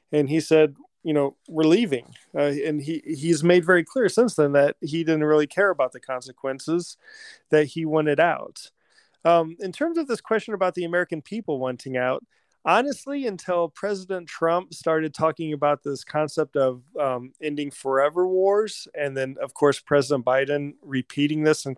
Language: English